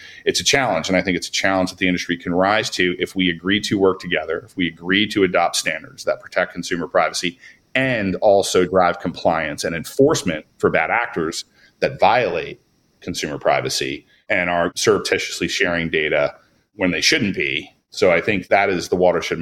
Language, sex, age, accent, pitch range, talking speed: English, male, 30-49, American, 90-115 Hz, 185 wpm